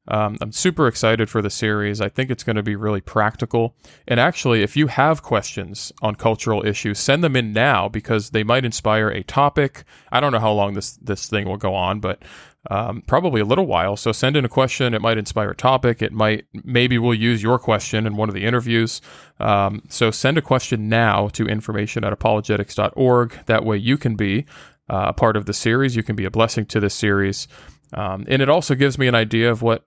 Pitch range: 105-120 Hz